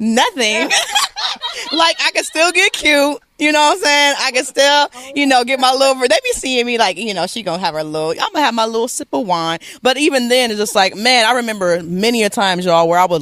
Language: English